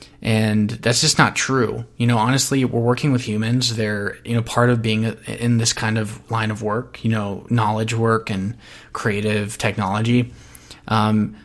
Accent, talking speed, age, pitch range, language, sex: American, 175 wpm, 20-39, 105-120 Hz, English, male